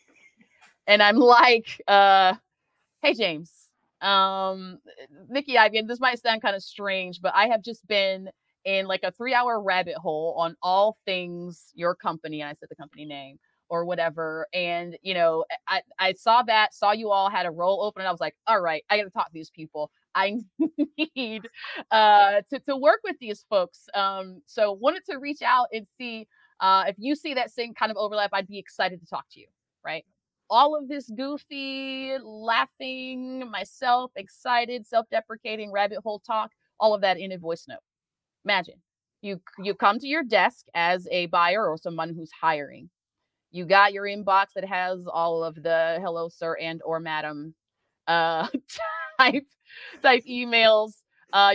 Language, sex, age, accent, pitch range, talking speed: English, female, 30-49, American, 170-230 Hz, 180 wpm